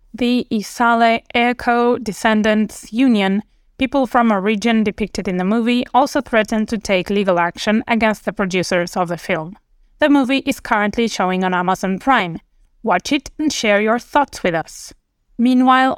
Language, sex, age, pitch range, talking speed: English, female, 20-39, 195-245 Hz, 160 wpm